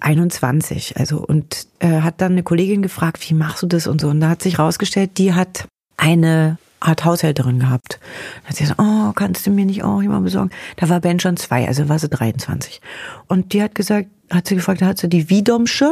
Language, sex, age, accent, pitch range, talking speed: German, female, 40-59, German, 170-210 Hz, 220 wpm